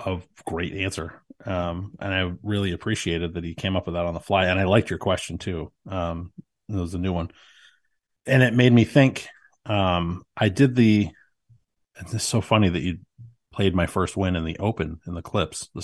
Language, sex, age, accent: English, male, 30-49, American